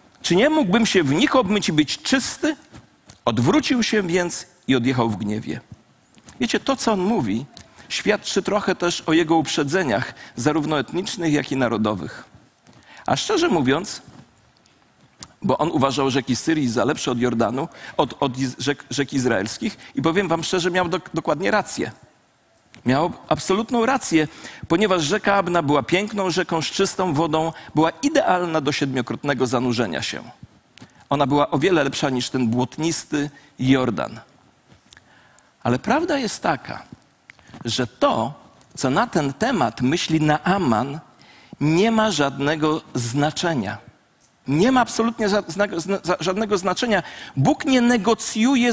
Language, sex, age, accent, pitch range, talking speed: Polish, male, 40-59, native, 140-210 Hz, 135 wpm